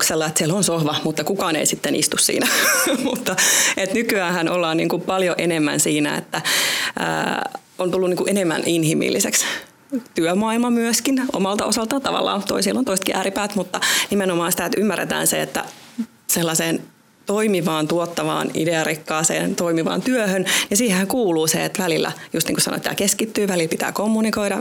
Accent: native